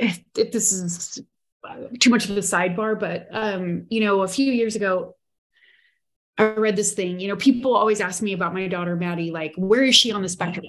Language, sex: English, female